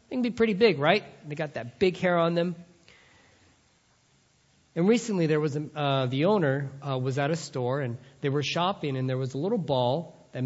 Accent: American